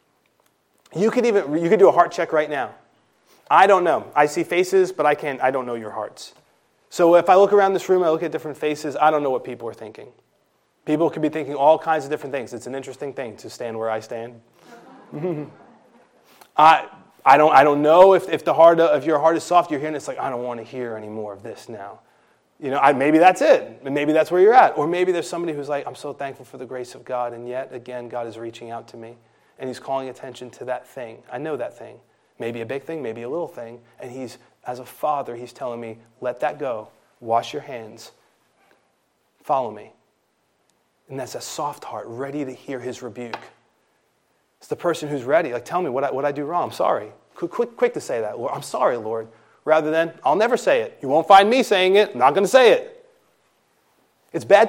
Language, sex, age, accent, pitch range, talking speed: English, male, 30-49, American, 125-170 Hz, 240 wpm